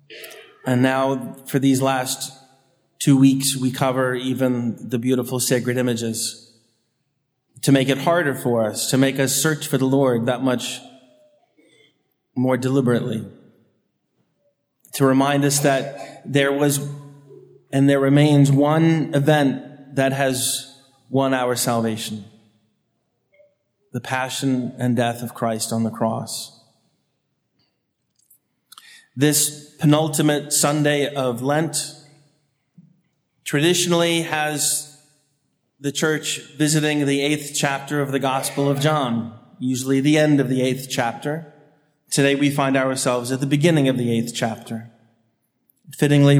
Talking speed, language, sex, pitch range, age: 120 wpm, English, male, 130-150 Hz, 30-49